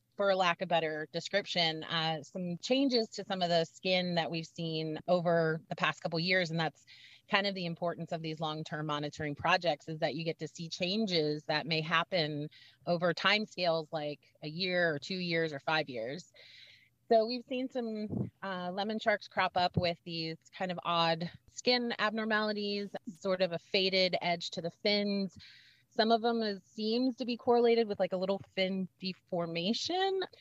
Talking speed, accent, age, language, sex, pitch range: 185 wpm, American, 30-49, English, female, 160-195 Hz